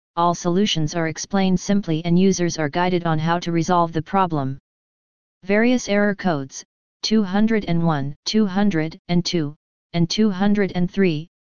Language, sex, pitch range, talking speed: English, female, 165-190 Hz, 115 wpm